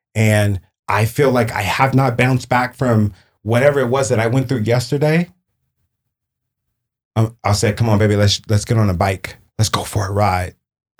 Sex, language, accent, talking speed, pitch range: male, English, American, 190 wpm, 100-120 Hz